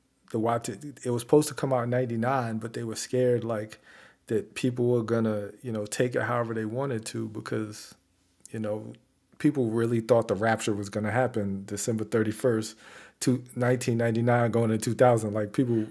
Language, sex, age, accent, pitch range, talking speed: English, male, 40-59, American, 110-135 Hz, 180 wpm